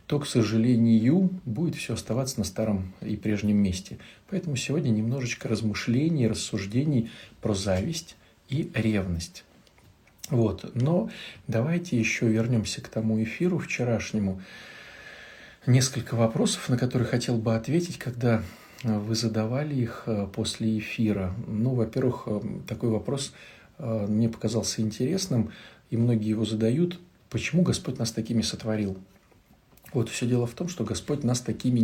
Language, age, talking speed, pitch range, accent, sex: Russian, 40-59, 125 wpm, 110-130 Hz, native, male